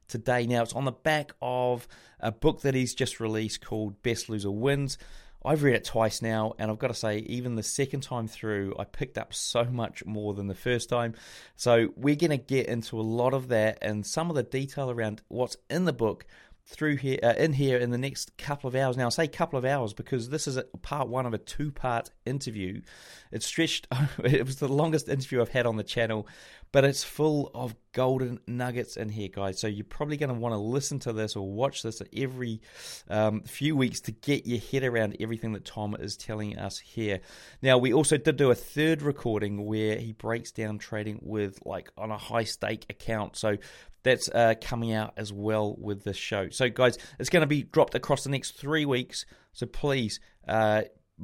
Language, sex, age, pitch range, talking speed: English, male, 30-49, 110-140 Hz, 215 wpm